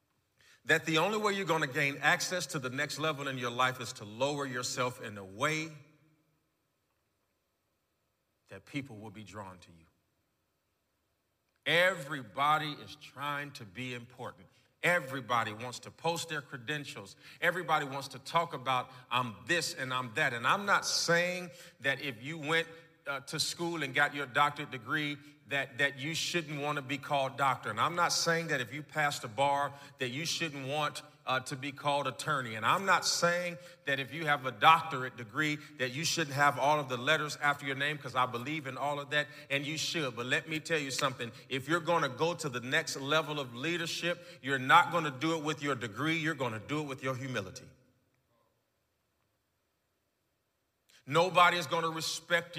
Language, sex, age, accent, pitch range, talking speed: English, male, 40-59, American, 130-155 Hz, 190 wpm